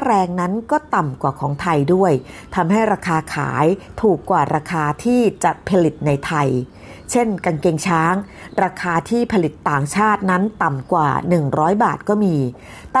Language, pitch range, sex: Thai, 160-205 Hz, female